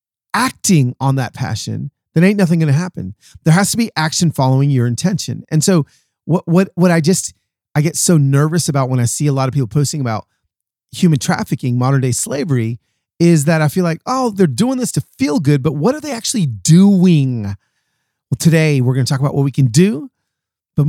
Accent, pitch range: American, 130-170 Hz